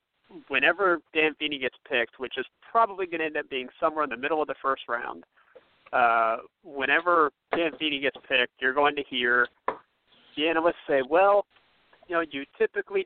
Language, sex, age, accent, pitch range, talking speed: English, male, 40-59, American, 130-165 Hz, 180 wpm